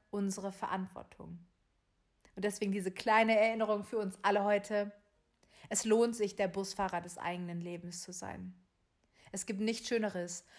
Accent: German